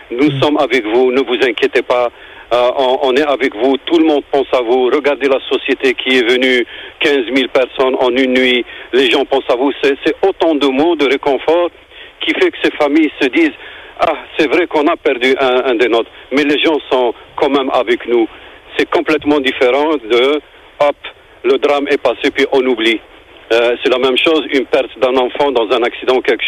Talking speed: 215 wpm